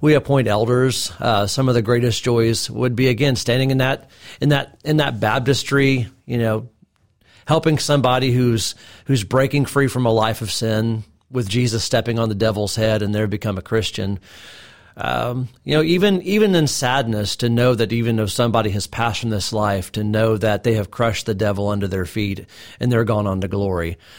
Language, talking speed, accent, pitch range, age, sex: English, 200 wpm, American, 105-130 Hz, 40-59, male